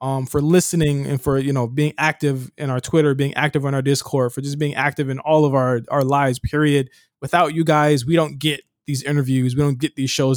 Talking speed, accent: 235 wpm, American